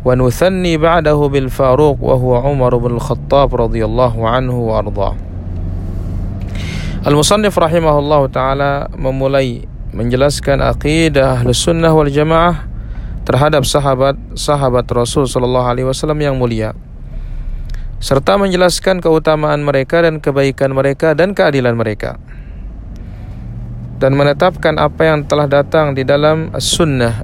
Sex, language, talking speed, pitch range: male, Indonesian, 90 wpm, 120-155 Hz